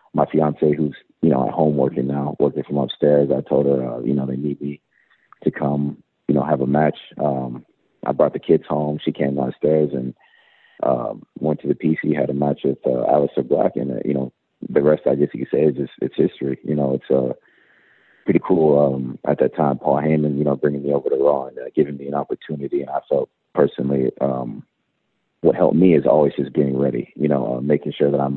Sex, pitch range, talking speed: male, 65-75 Hz, 230 wpm